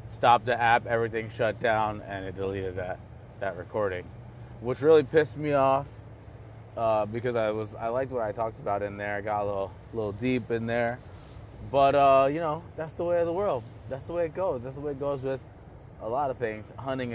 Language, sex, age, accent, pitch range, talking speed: English, male, 20-39, American, 105-125 Hz, 220 wpm